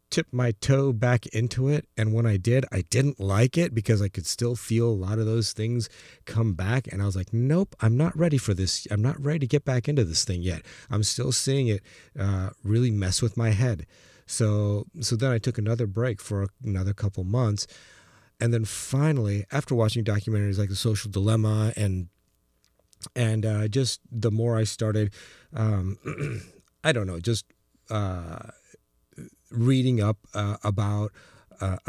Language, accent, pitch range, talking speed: English, American, 95-115 Hz, 180 wpm